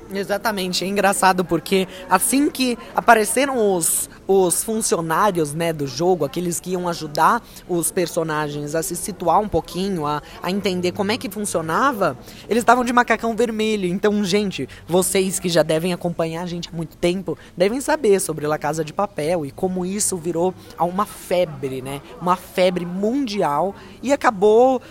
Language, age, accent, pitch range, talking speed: Portuguese, 20-39, Brazilian, 175-225 Hz, 160 wpm